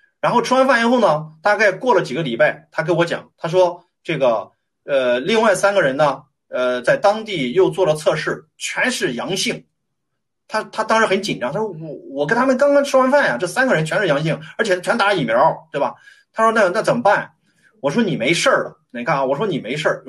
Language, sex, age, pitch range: Chinese, male, 30-49, 155-230 Hz